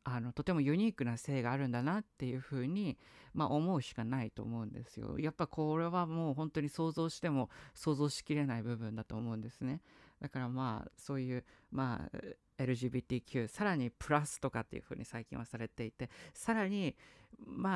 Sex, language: female, Japanese